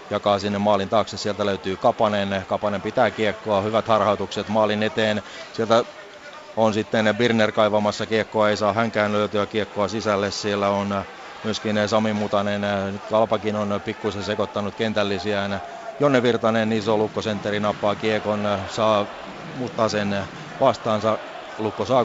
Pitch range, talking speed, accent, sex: 100-110 Hz, 130 wpm, native, male